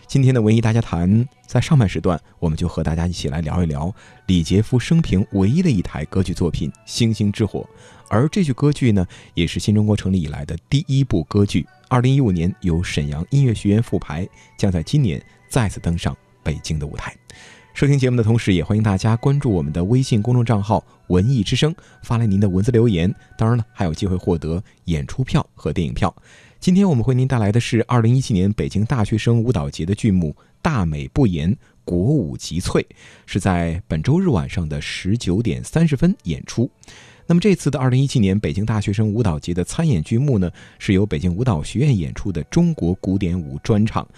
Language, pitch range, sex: Chinese, 90-125 Hz, male